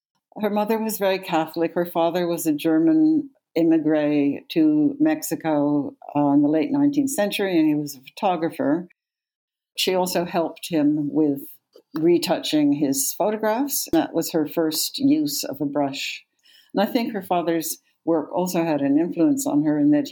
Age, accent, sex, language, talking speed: 60-79, American, female, English, 160 wpm